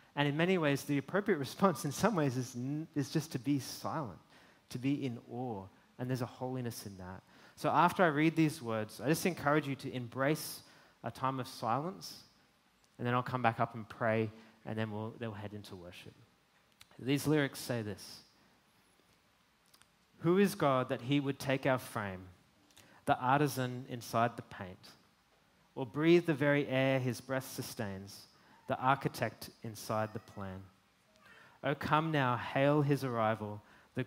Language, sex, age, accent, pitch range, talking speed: English, male, 30-49, Australian, 110-140 Hz, 170 wpm